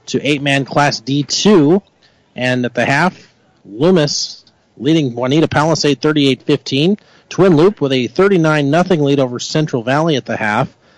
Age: 40-59